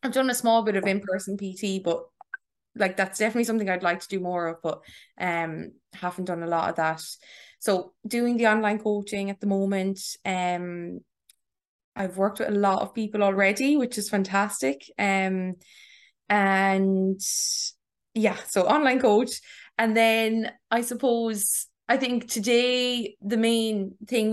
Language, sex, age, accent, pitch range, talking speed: English, female, 20-39, Irish, 190-225 Hz, 155 wpm